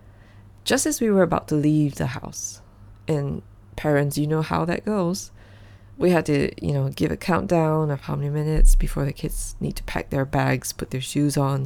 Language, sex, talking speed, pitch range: English, female, 205 wpm, 100-155 Hz